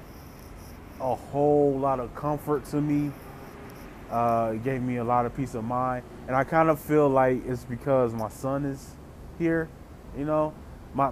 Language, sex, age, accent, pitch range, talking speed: English, male, 20-39, American, 110-145 Hz, 165 wpm